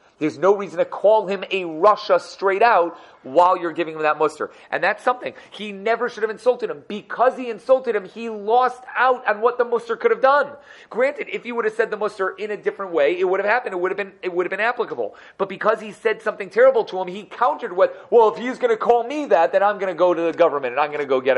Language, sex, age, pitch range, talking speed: English, male, 30-49, 165-245 Hz, 270 wpm